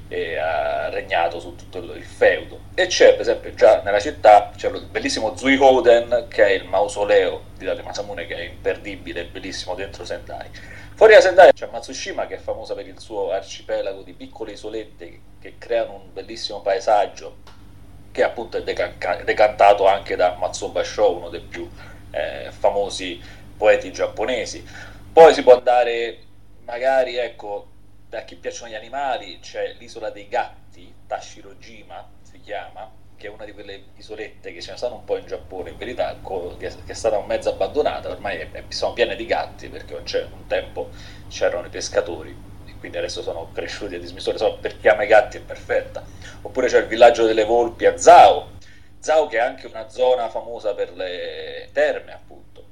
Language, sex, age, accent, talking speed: Italian, male, 30-49, native, 175 wpm